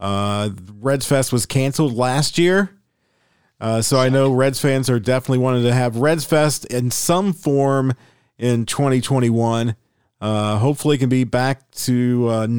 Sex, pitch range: male, 115-145 Hz